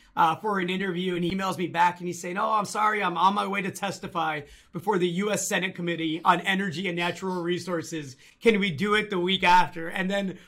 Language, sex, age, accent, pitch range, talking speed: English, male, 30-49, American, 165-215 Hz, 230 wpm